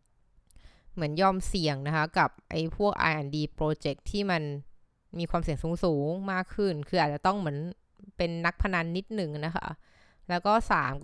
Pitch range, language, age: 150-185 Hz, Thai, 20-39